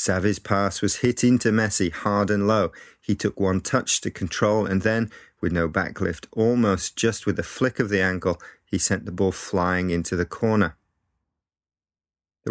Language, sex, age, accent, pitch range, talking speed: English, male, 30-49, British, 90-110 Hz, 180 wpm